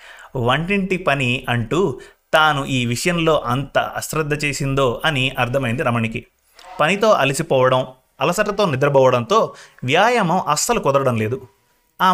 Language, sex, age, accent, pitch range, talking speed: Telugu, male, 30-49, native, 125-175 Hz, 105 wpm